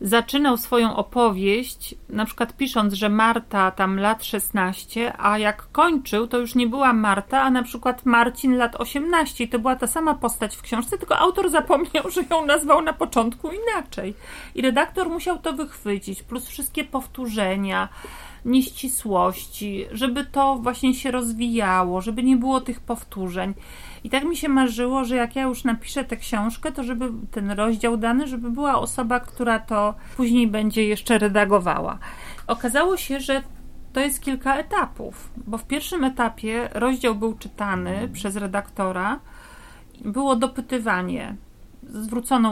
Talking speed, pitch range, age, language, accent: 150 wpm, 205-255 Hz, 40-59, Polish, native